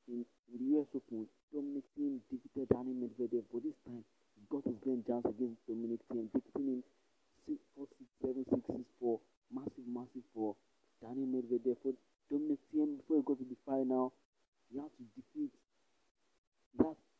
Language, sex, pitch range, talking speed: English, male, 115-140 Hz, 170 wpm